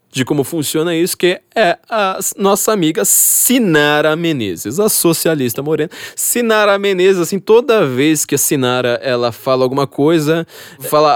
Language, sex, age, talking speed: Portuguese, male, 20-39, 145 wpm